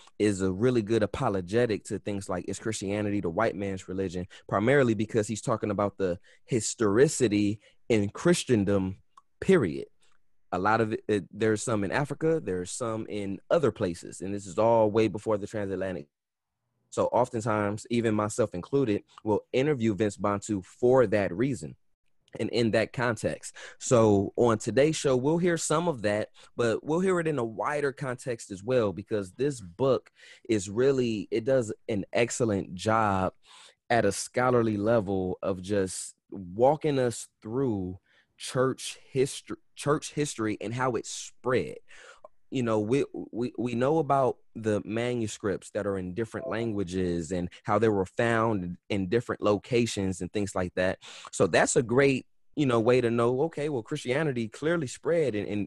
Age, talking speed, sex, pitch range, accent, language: 20-39, 160 wpm, male, 100-125 Hz, American, English